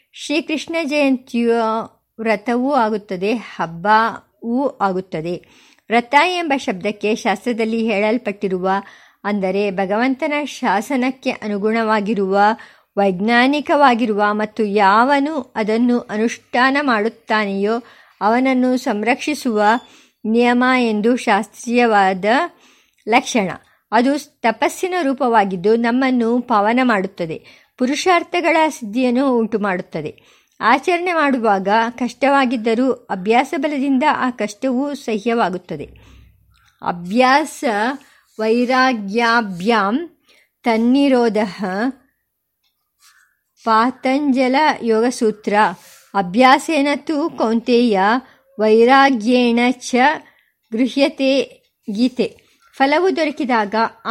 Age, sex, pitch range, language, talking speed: 50-69, male, 215-270 Hz, Kannada, 65 wpm